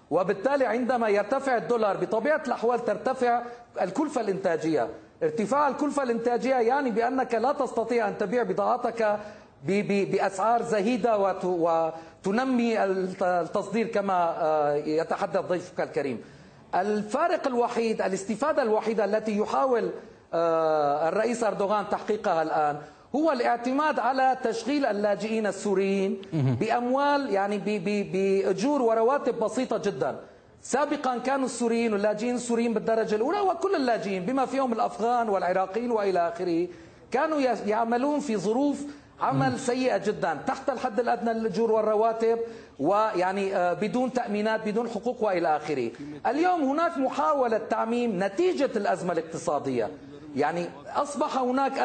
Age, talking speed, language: 40-59, 110 wpm, Arabic